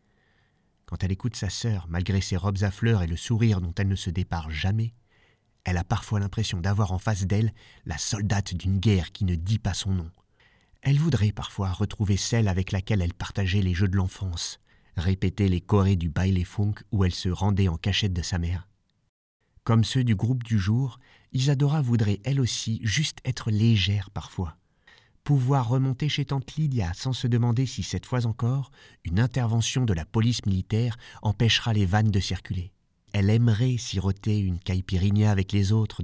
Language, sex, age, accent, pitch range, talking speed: French, male, 30-49, French, 95-115 Hz, 185 wpm